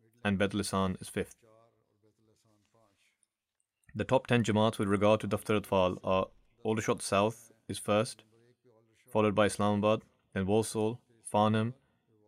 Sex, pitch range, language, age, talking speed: male, 105-115 Hz, English, 20-39, 115 wpm